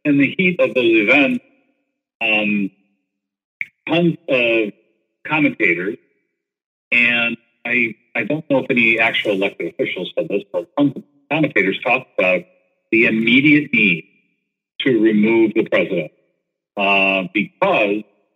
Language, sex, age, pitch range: English, male, 50-69, 105-160 Hz